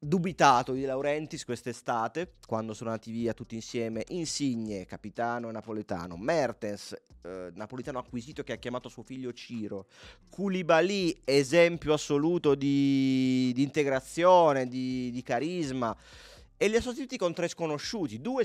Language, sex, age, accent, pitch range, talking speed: Italian, male, 30-49, native, 120-155 Hz, 135 wpm